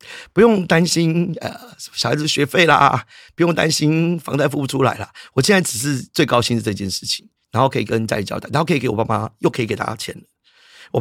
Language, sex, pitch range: Chinese, male, 115-170 Hz